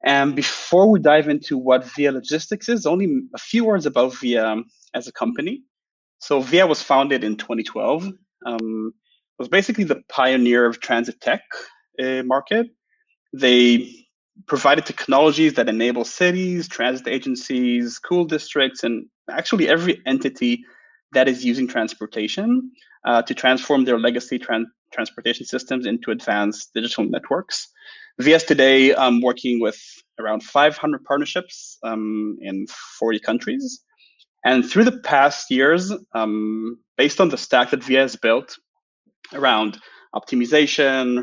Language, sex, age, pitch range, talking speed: English, male, 30-49, 120-180 Hz, 130 wpm